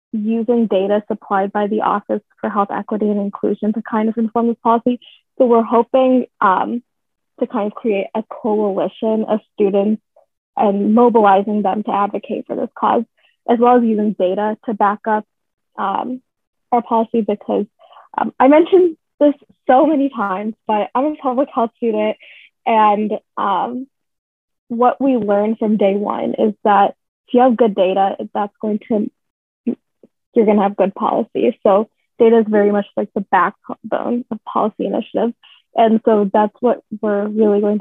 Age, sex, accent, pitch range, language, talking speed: 20-39, female, American, 210-245 Hz, English, 165 wpm